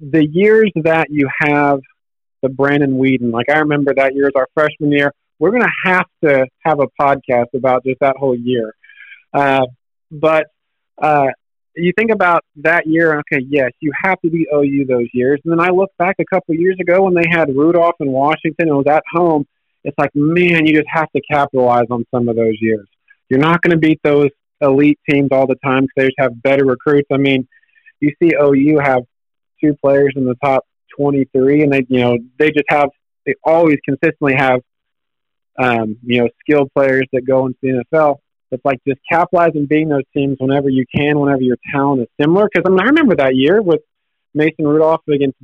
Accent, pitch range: American, 130-160 Hz